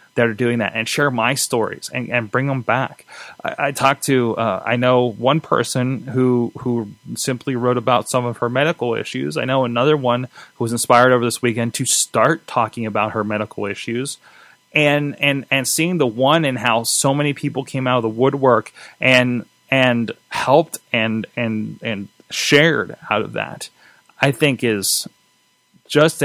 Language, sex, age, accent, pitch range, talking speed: English, male, 20-39, American, 115-135 Hz, 180 wpm